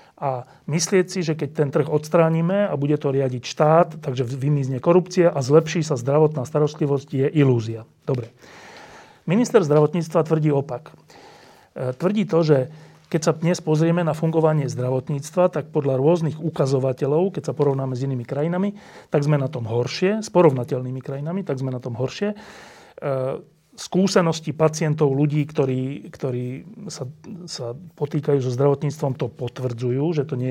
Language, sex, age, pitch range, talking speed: Slovak, male, 40-59, 135-175 Hz, 150 wpm